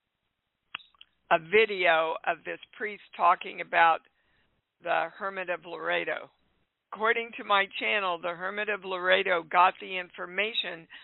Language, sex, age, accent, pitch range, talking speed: English, female, 60-79, American, 170-205 Hz, 120 wpm